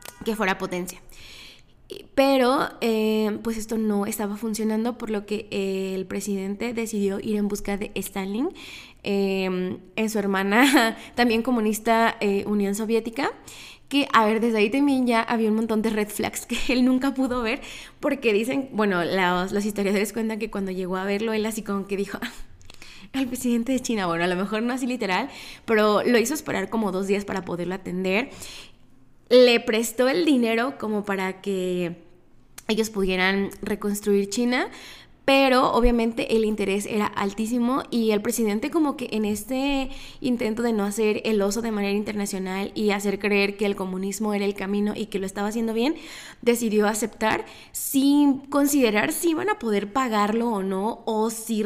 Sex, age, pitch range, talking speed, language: female, 20-39, 200-240 Hz, 170 wpm, Spanish